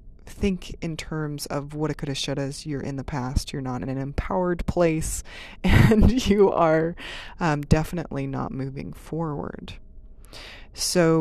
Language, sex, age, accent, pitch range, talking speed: English, female, 20-39, American, 145-170 Hz, 155 wpm